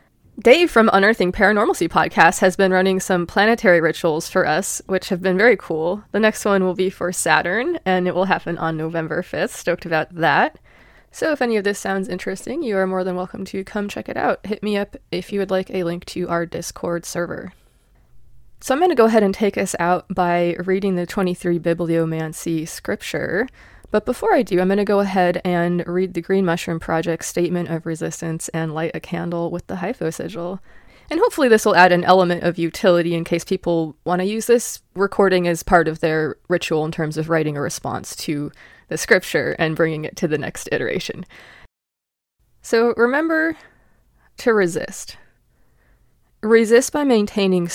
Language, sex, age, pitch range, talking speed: English, female, 20-39, 165-200 Hz, 190 wpm